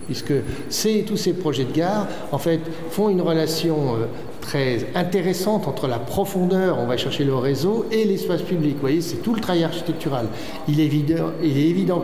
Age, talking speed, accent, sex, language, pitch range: 60-79, 195 wpm, French, male, French, 140-180 Hz